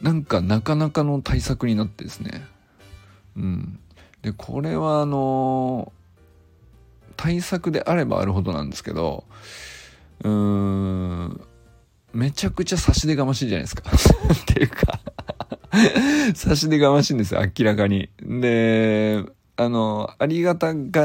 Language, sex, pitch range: Japanese, male, 95-140 Hz